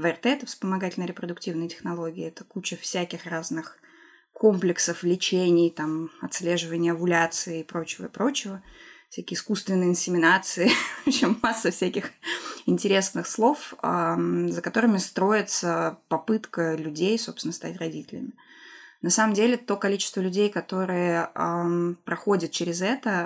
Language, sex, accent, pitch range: Russian, female, native, 170-215 Hz